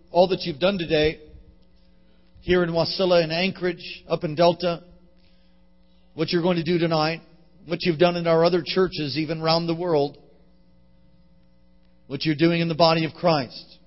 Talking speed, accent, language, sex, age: 165 wpm, American, English, male, 40-59